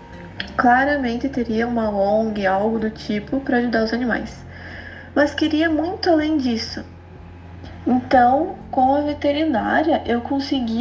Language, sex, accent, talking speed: Portuguese, female, Brazilian, 120 wpm